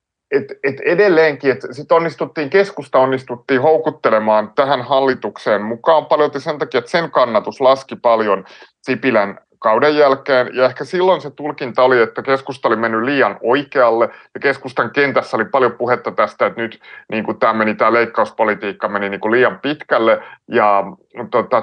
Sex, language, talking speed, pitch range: male, Finnish, 155 wpm, 115-150 Hz